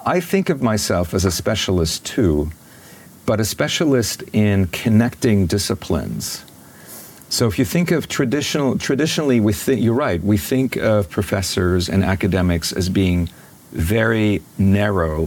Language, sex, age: English, male, 40-59